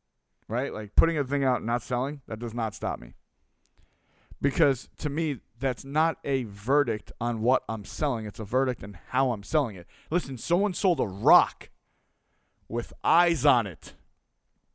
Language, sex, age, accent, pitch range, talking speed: English, male, 40-59, American, 110-150 Hz, 170 wpm